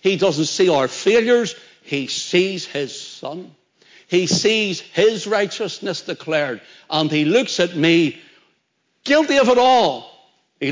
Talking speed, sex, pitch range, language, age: 135 wpm, male, 135-185 Hz, English, 60-79